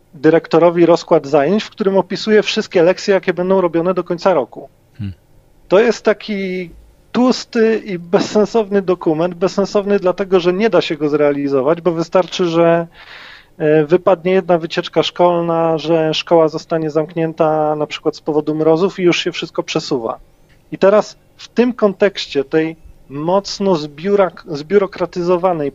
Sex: male